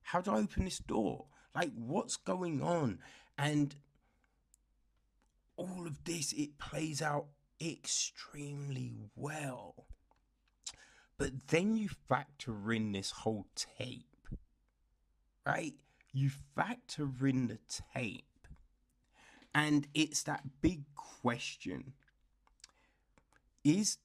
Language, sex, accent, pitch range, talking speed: English, male, British, 100-150 Hz, 95 wpm